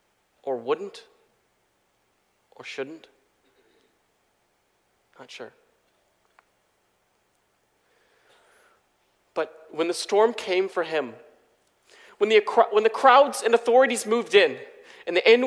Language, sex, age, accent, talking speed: English, male, 40-59, American, 95 wpm